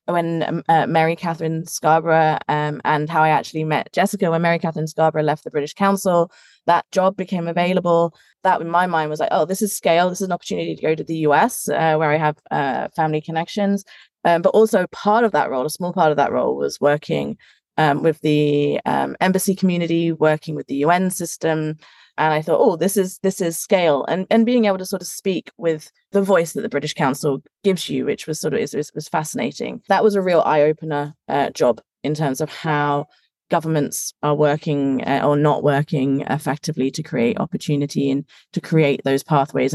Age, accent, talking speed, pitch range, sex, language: 20-39, British, 210 wpm, 150-185 Hz, female, English